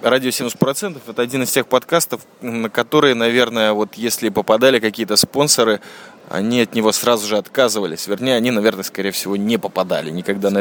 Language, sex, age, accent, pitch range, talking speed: Russian, male, 20-39, native, 110-145 Hz, 170 wpm